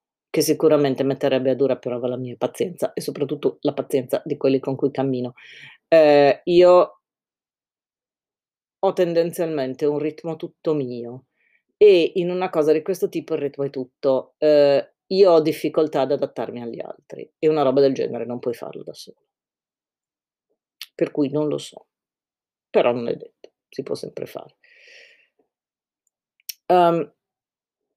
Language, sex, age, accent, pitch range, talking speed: Italian, female, 40-59, native, 135-190 Hz, 150 wpm